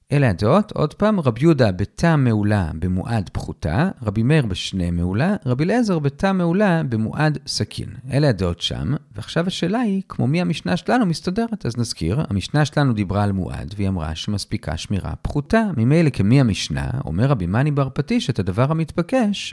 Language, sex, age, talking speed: Hebrew, male, 40-59, 160 wpm